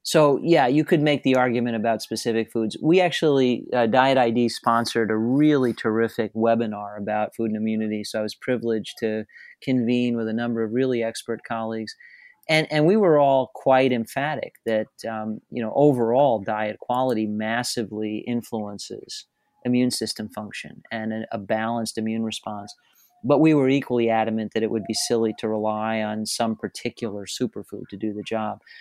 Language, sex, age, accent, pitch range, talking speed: English, male, 40-59, American, 110-125 Hz, 170 wpm